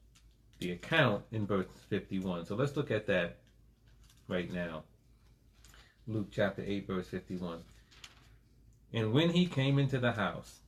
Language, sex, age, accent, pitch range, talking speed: English, male, 30-49, American, 95-120 Hz, 135 wpm